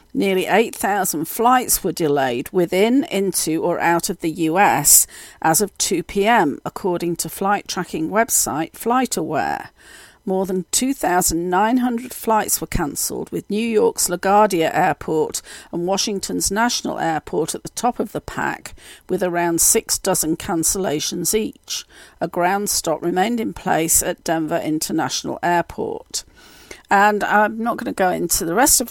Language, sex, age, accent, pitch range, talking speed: English, female, 50-69, British, 175-230 Hz, 145 wpm